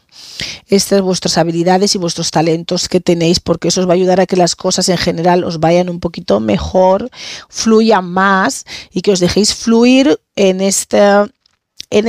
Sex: female